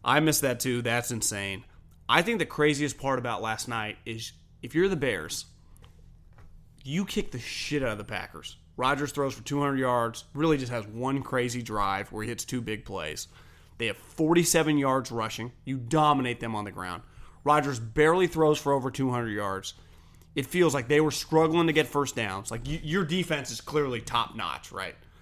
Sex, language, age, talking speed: male, English, 30-49, 190 wpm